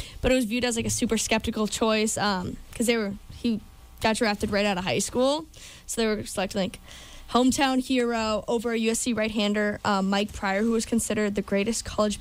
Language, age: English, 10-29